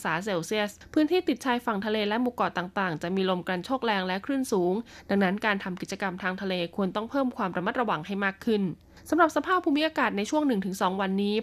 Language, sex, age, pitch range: Thai, female, 20-39, 190-240 Hz